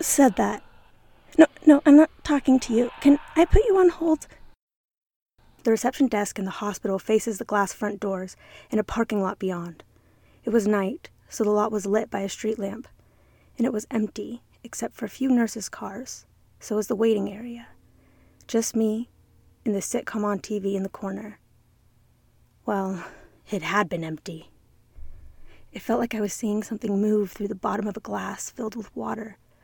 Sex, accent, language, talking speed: female, American, English, 180 wpm